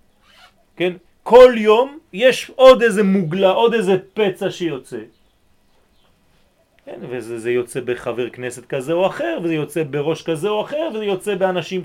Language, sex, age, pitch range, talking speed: French, male, 30-49, 140-215 Hz, 140 wpm